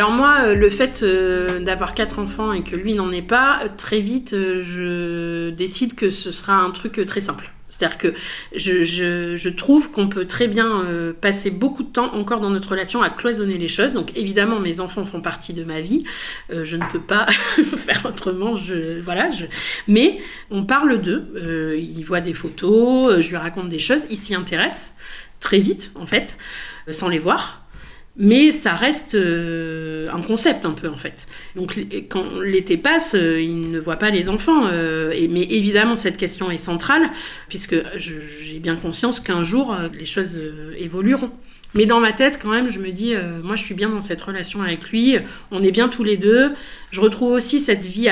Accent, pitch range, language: French, 170-230 Hz, French